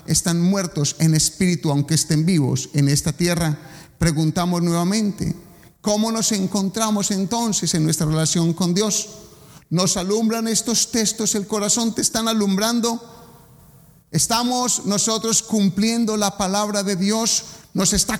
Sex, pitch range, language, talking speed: male, 165-220 Hz, English, 130 wpm